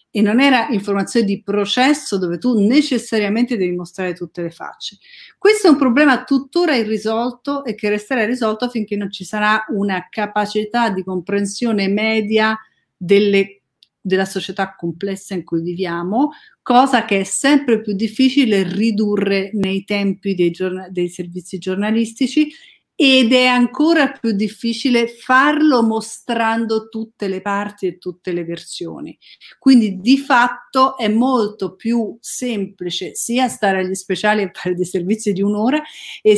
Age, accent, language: 50-69, native, Italian